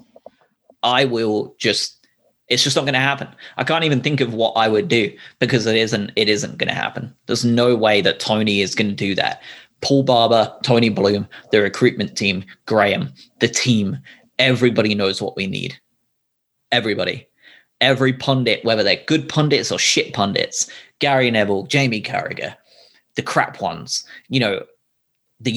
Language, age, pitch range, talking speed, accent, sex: English, 20-39, 110-140 Hz, 165 wpm, British, male